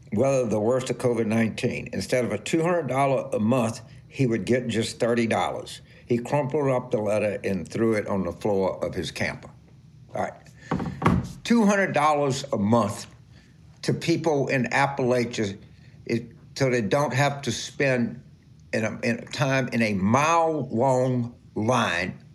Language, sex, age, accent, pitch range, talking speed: English, male, 60-79, American, 125-170 Hz, 150 wpm